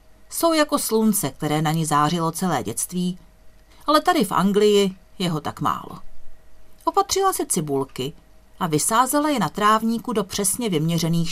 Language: Czech